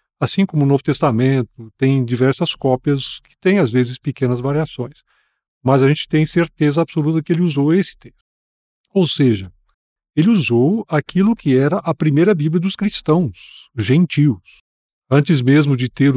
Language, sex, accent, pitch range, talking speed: Portuguese, male, Brazilian, 120-155 Hz, 155 wpm